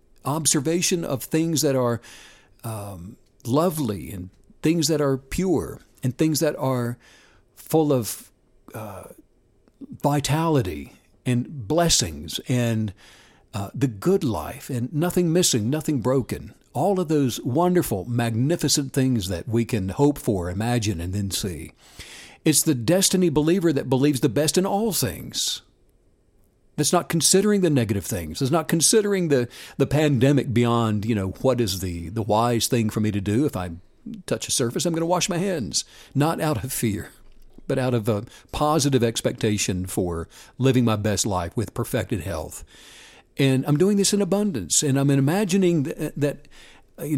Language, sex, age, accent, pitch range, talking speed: English, male, 60-79, American, 110-155 Hz, 155 wpm